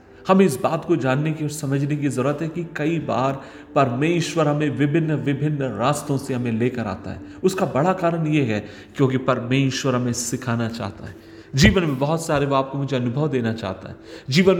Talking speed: 195 wpm